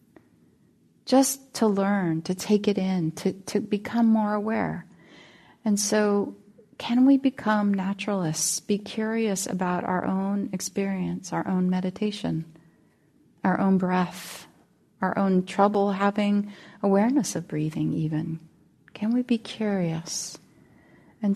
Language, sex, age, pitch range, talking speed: English, female, 30-49, 175-215 Hz, 120 wpm